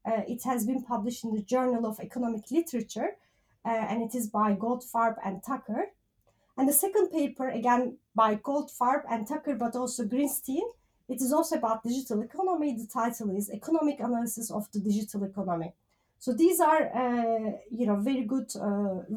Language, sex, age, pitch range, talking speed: English, female, 30-49, 215-270 Hz, 170 wpm